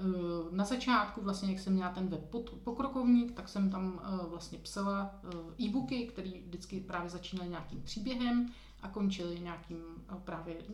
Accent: native